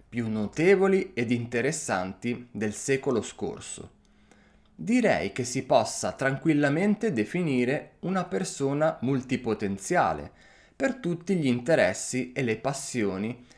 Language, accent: Italian, native